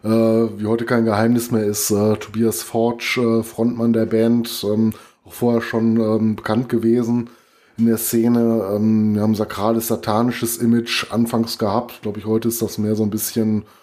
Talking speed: 155 wpm